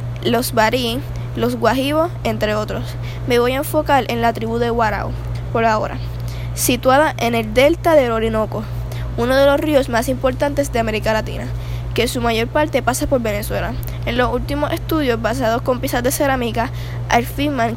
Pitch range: 115-155 Hz